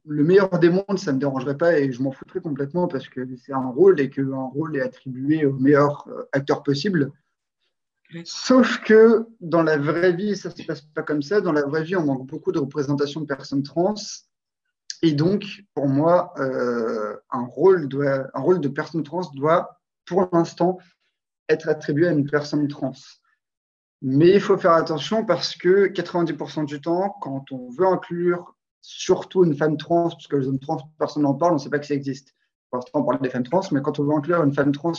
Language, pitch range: French, 140-175 Hz